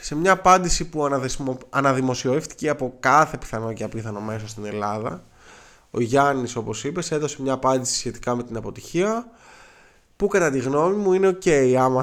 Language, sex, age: Greek, male, 20-39